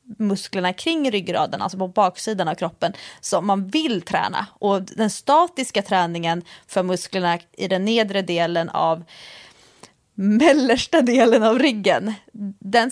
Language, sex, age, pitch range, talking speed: English, female, 30-49, 180-245 Hz, 130 wpm